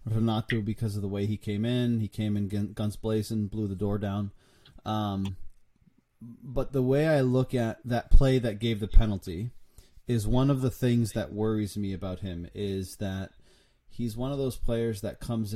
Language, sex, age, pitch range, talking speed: English, male, 30-49, 105-125 Hz, 190 wpm